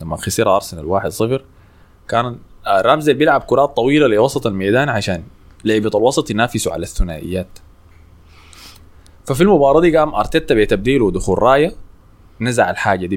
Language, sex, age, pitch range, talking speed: Arabic, male, 20-39, 85-120 Hz, 130 wpm